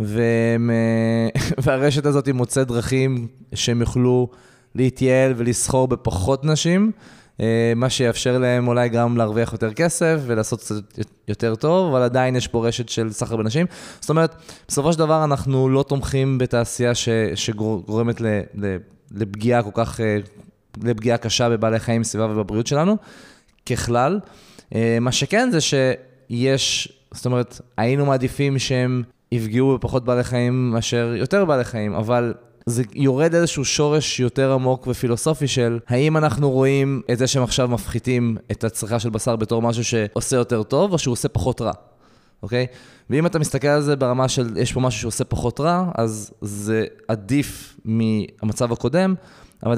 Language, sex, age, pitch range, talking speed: Hebrew, male, 20-39, 115-135 Hz, 145 wpm